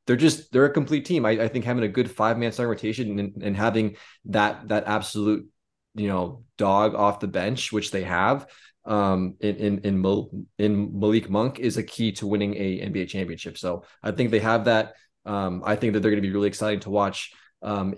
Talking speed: 210 wpm